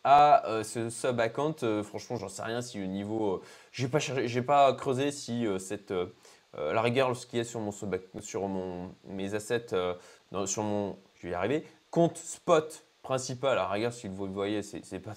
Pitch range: 110-150 Hz